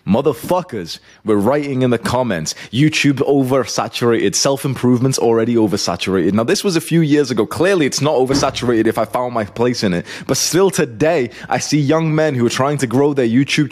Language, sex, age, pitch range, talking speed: English, male, 20-39, 105-145 Hz, 190 wpm